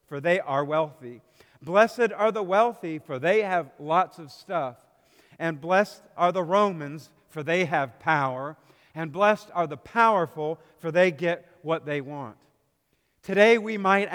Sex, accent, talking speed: male, American, 155 wpm